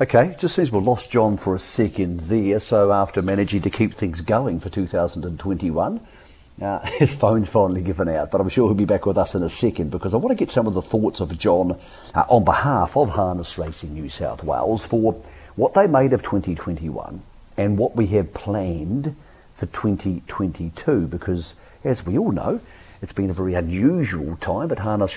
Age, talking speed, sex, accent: 50-69, 195 wpm, male, British